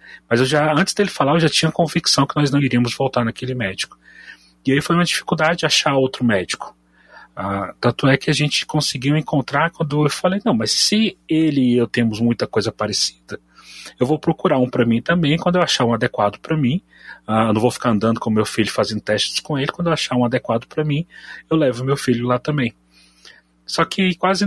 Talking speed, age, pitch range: 220 wpm, 30-49, 115-145 Hz